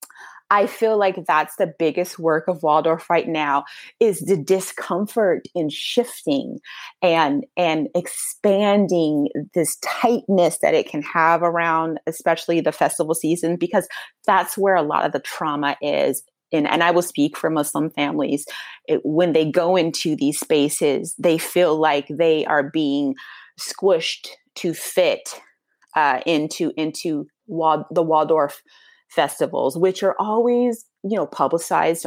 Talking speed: 140 wpm